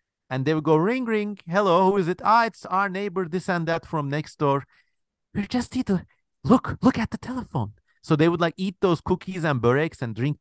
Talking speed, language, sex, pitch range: 230 wpm, English, male, 125-170 Hz